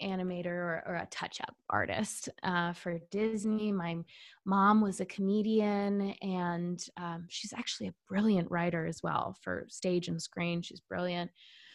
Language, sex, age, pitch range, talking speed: English, female, 20-39, 180-240 Hz, 150 wpm